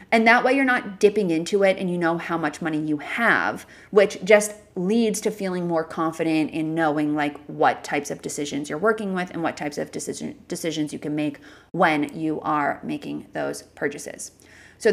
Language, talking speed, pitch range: English, 195 wpm, 155-205 Hz